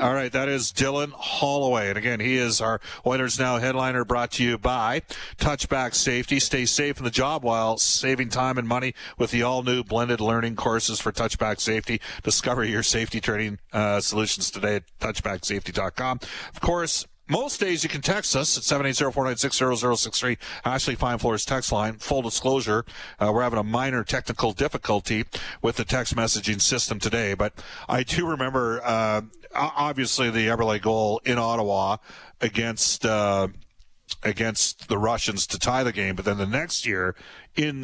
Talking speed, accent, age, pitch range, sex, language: 165 wpm, American, 40-59, 110-130 Hz, male, English